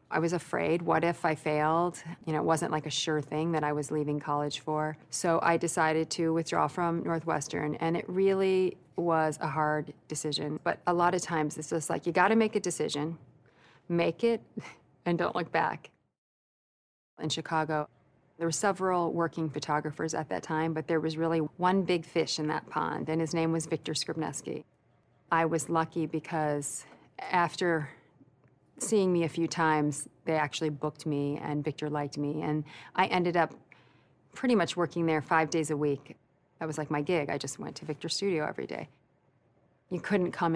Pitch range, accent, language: 150-170 Hz, American, English